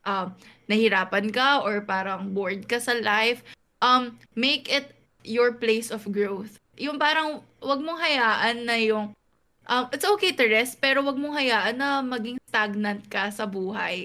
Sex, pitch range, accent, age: female, 215-265 Hz, native, 20-39